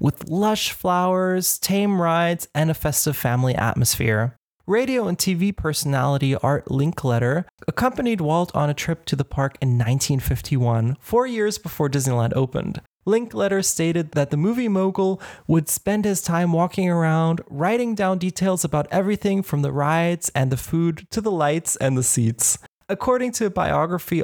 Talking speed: 160 wpm